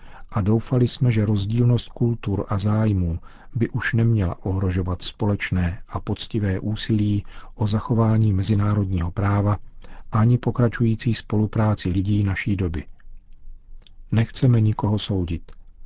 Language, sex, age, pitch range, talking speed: Czech, male, 40-59, 95-110 Hz, 110 wpm